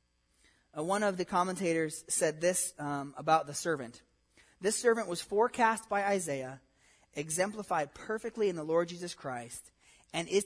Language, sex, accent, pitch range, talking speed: English, male, American, 145-200 Hz, 145 wpm